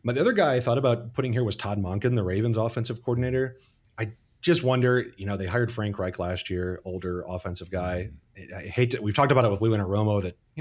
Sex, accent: male, American